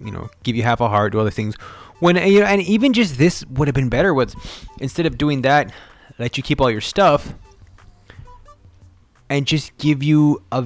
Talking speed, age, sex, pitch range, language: 210 wpm, 20-39, male, 105-145 Hz, English